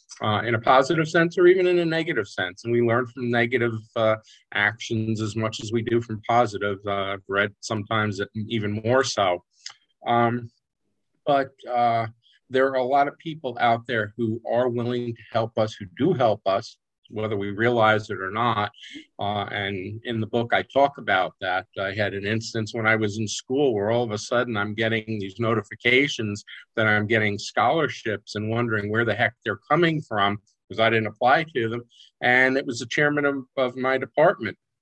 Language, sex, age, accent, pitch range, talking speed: English, male, 50-69, American, 110-130 Hz, 195 wpm